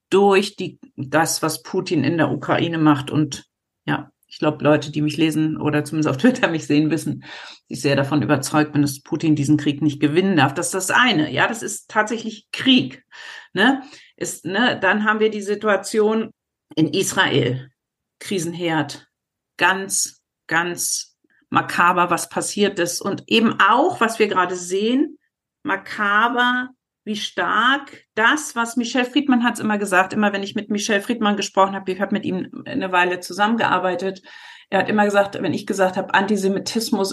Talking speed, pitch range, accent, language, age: 160 wpm, 160-220 Hz, German, German, 50-69